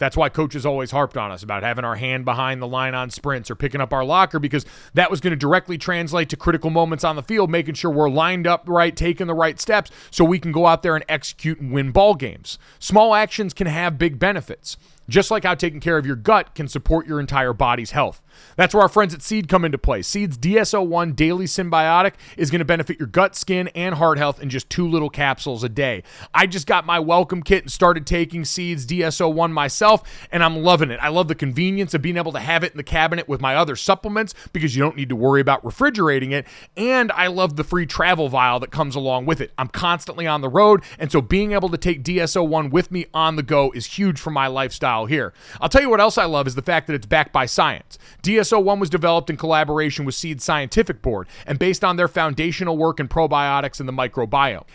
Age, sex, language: 30-49, male, English